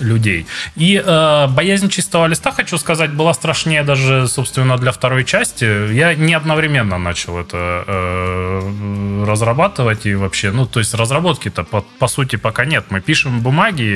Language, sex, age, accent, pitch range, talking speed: Russian, male, 20-39, native, 95-140 Hz, 155 wpm